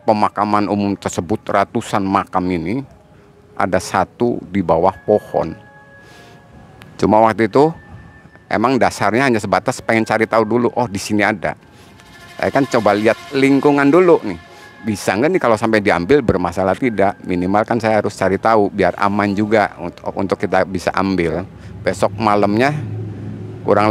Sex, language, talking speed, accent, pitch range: male, Indonesian, 145 wpm, native, 95-120 Hz